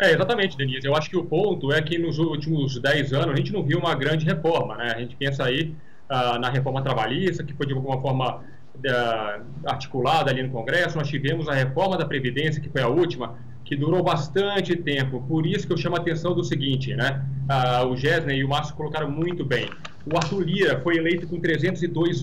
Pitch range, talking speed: 135-175 Hz, 210 wpm